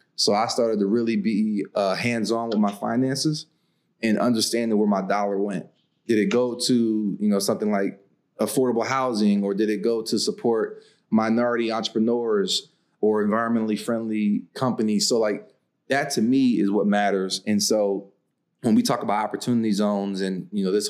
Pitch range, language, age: 105-125 Hz, English, 30-49